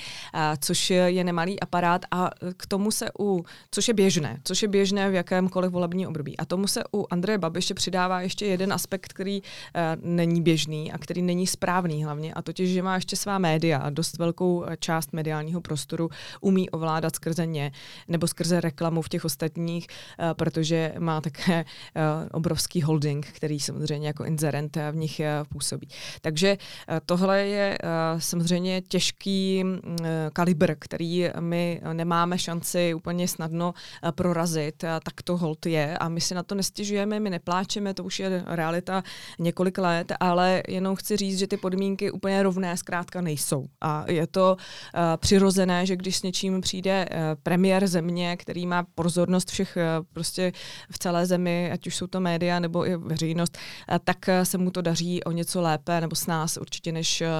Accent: native